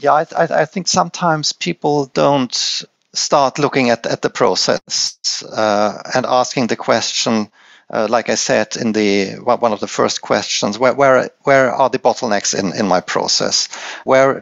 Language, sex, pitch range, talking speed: English, male, 110-135 Hz, 170 wpm